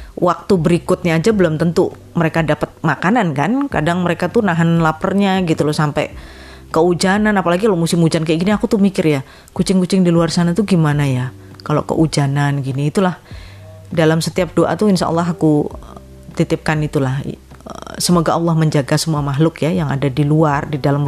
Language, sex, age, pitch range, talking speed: Indonesian, female, 30-49, 145-175 Hz, 170 wpm